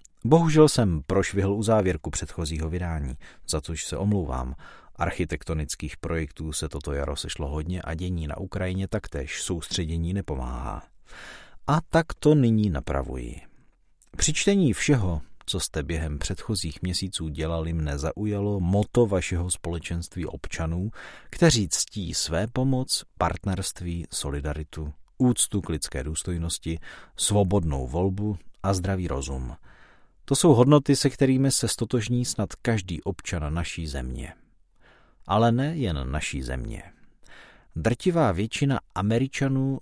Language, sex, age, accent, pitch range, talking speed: Czech, male, 40-59, native, 80-110 Hz, 120 wpm